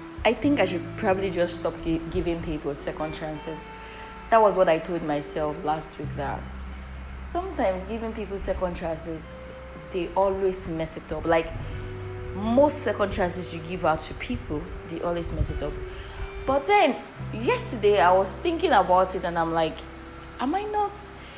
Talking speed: 165 wpm